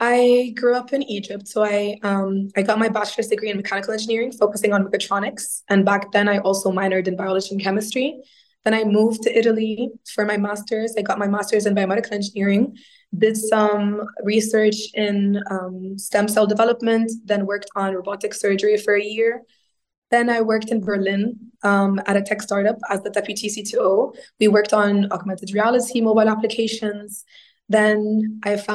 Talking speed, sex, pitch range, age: 175 wpm, female, 200-220 Hz, 20-39